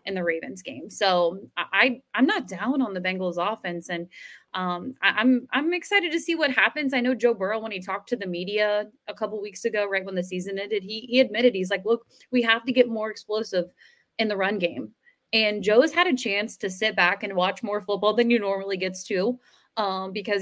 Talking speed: 230 wpm